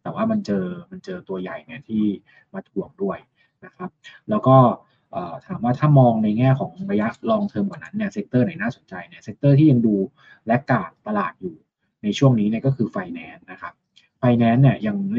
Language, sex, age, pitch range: Thai, male, 20-39, 125-185 Hz